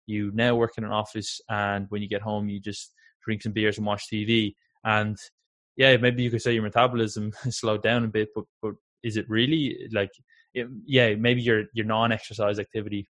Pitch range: 105-125 Hz